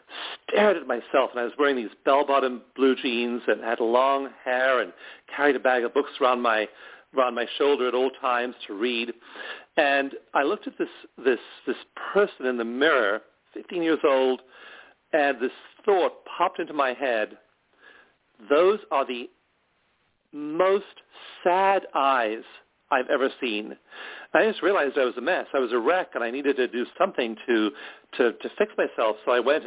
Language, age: English, 50-69